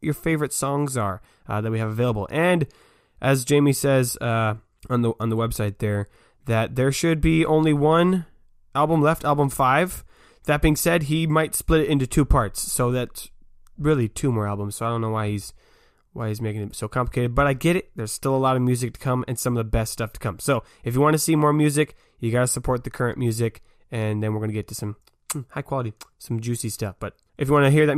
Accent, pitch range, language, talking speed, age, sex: American, 115-150 Hz, English, 240 wpm, 20-39, male